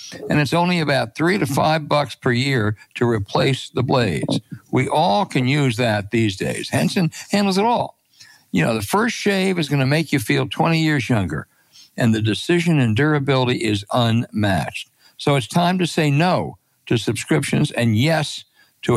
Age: 60-79